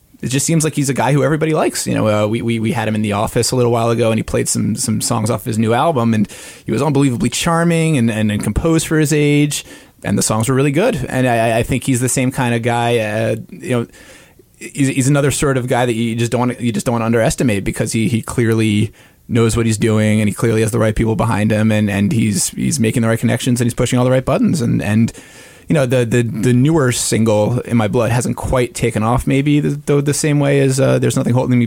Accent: American